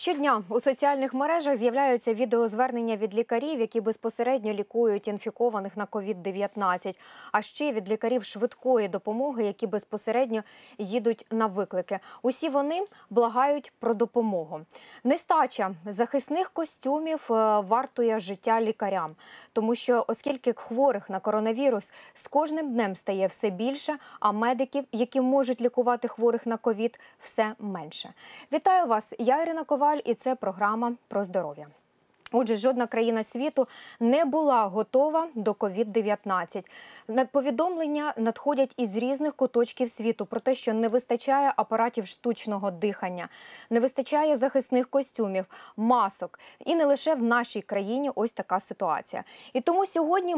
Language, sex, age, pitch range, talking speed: Ukrainian, female, 20-39, 220-275 Hz, 130 wpm